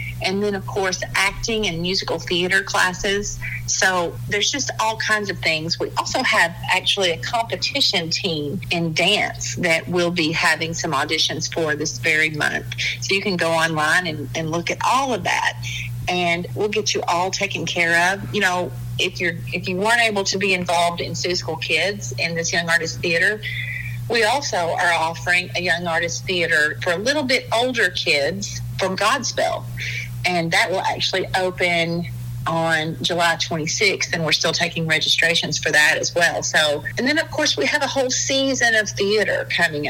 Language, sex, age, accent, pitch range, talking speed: English, female, 40-59, American, 145-185 Hz, 185 wpm